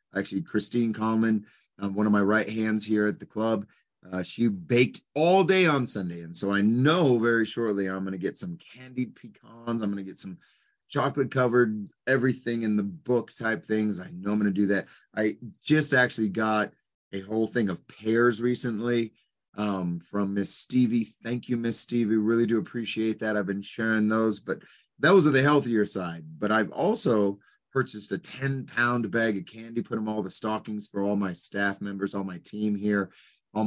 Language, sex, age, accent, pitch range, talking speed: English, male, 30-49, American, 100-125 Hz, 195 wpm